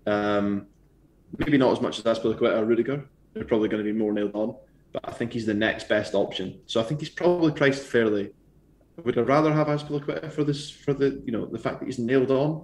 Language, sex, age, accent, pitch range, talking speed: English, male, 20-39, British, 105-135 Hz, 235 wpm